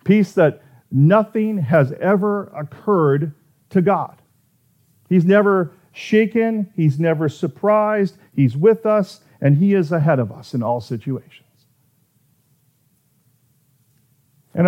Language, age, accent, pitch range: English, 40-59, American, 130-170 Hz